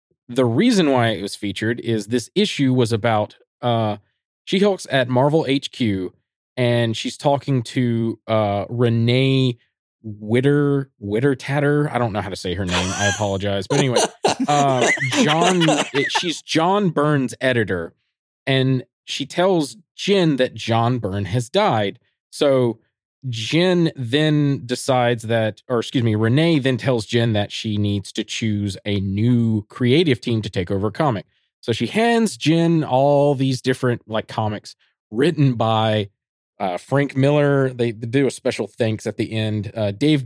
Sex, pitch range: male, 110-140 Hz